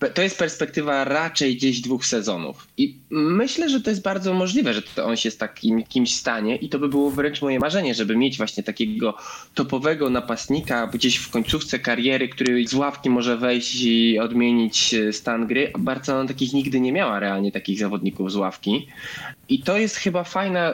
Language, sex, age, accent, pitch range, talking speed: Polish, male, 20-39, native, 115-145 Hz, 175 wpm